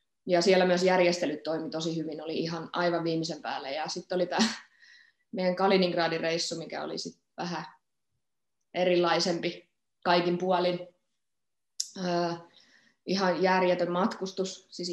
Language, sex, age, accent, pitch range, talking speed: Finnish, female, 20-39, native, 170-195 Hz, 125 wpm